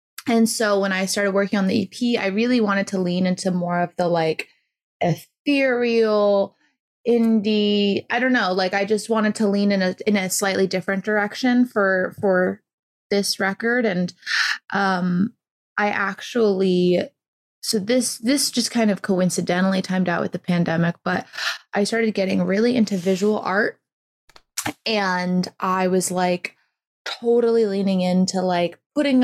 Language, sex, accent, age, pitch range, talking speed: English, female, American, 20-39, 185-225 Hz, 150 wpm